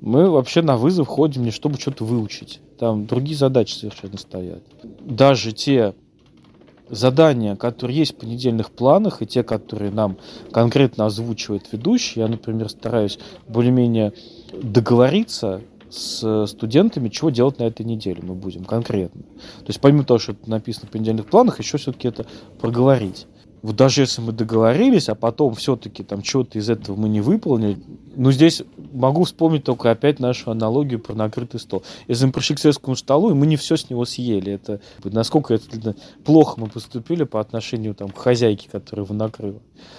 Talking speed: 165 wpm